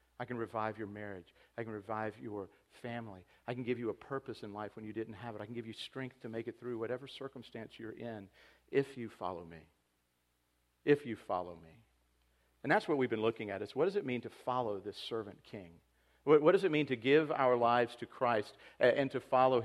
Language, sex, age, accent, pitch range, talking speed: English, male, 50-69, American, 110-140 Hz, 225 wpm